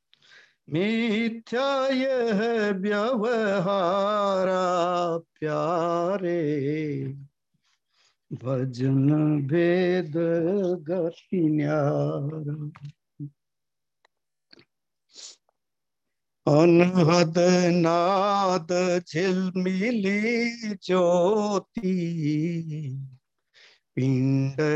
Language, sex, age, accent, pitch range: Hindi, male, 60-79, native, 155-210 Hz